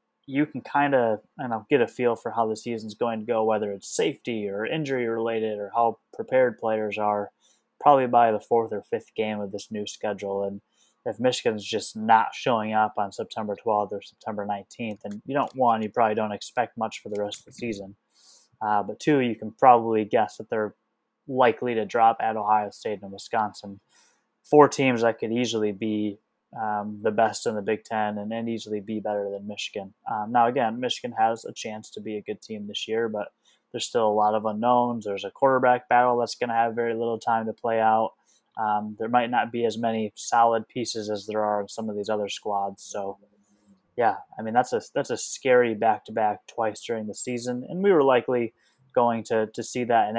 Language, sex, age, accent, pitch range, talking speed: English, male, 20-39, American, 105-115 Hz, 210 wpm